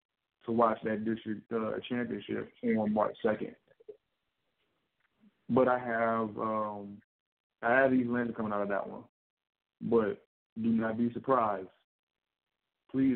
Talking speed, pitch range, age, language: 130 wpm, 115-130 Hz, 20-39, English